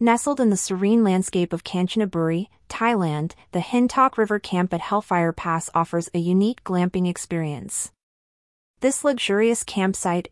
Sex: female